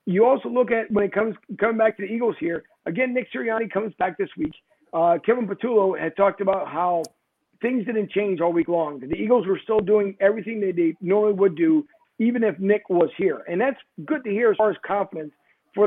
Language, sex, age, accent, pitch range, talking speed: English, male, 50-69, American, 185-220 Hz, 225 wpm